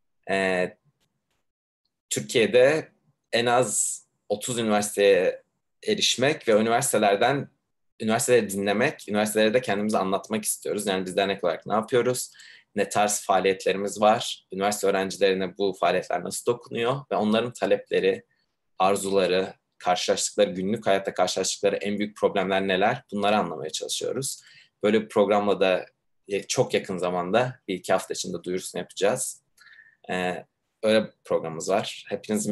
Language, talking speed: Turkish, 120 wpm